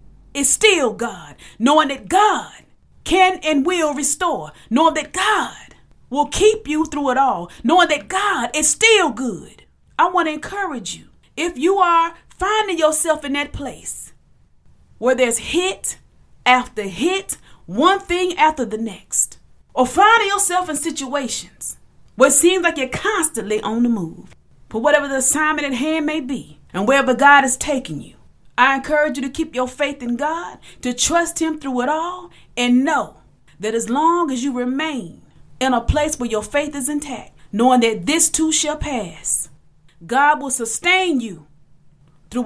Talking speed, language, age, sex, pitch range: 165 wpm, English, 40-59, female, 235-315 Hz